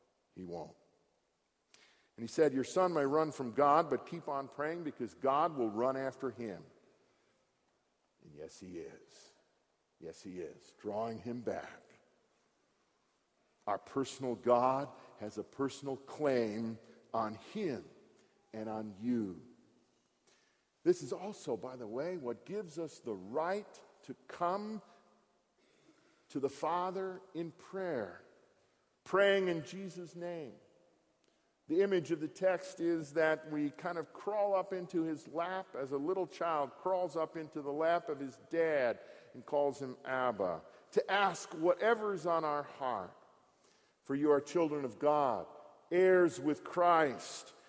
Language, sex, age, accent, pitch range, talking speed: English, male, 50-69, American, 135-190 Hz, 140 wpm